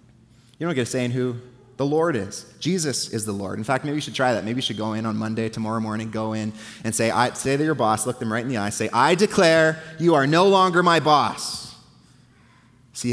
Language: English